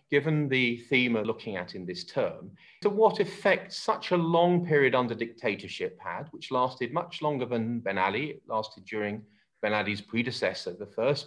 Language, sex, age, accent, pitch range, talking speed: English, male, 40-59, British, 105-155 Hz, 180 wpm